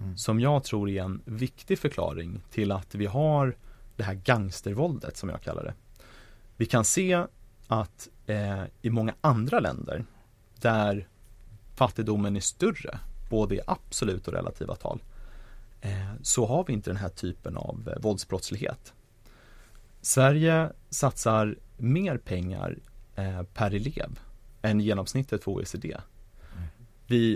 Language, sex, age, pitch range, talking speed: English, male, 30-49, 100-125 Hz, 125 wpm